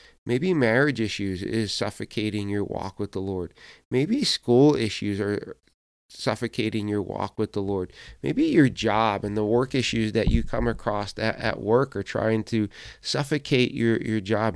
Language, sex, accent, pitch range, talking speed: English, male, American, 110-135 Hz, 165 wpm